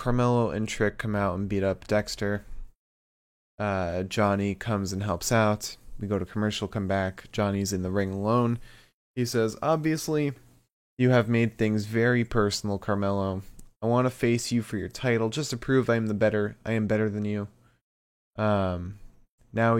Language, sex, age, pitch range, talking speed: English, male, 20-39, 100-120 Hz, 175 wpm